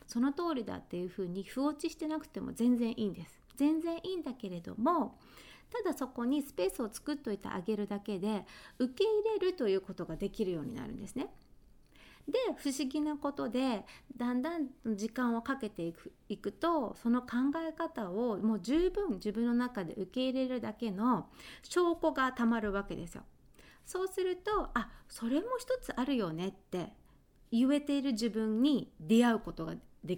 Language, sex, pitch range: Japanese, female, 200-285 Hz